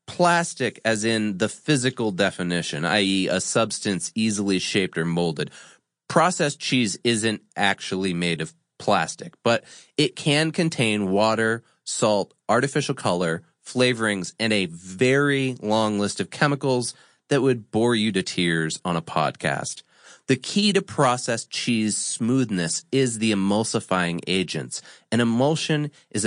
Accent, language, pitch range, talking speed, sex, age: American, English, 100-135 Hz, 130 wpm, male, 30-49